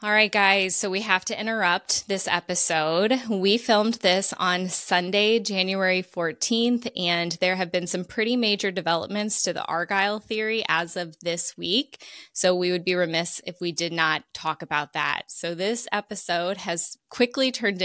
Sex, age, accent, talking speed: female, 20-39, American, 170 wpm